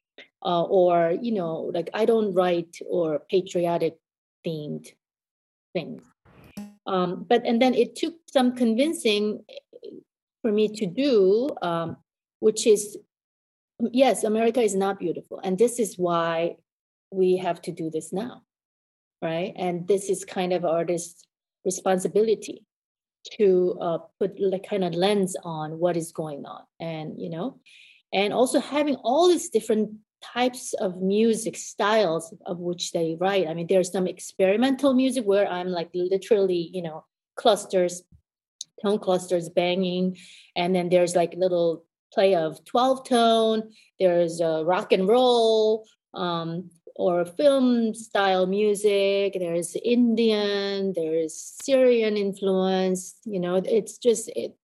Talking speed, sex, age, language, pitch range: 135 wpm, female, 30-49, English, 175-225 Hz